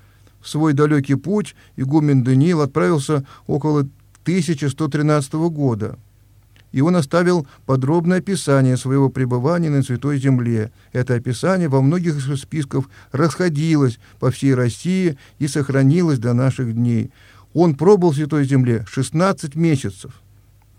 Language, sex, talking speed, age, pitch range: Russian, male, 120 wpm, 50-69, 115-150 Hz